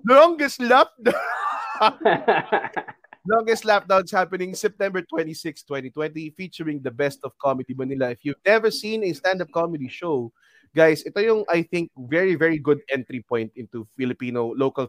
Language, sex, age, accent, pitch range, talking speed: English, male, 20-39, Filipino, 130-170 Hz, 145 wpm